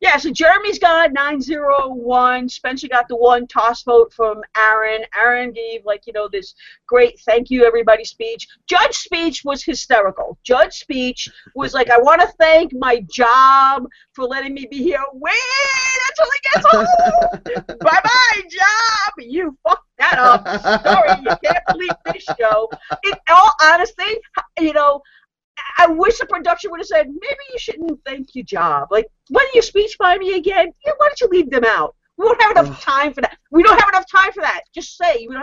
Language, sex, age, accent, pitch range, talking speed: English, female, 40-59, American, 245-350 Hz, 190 wpm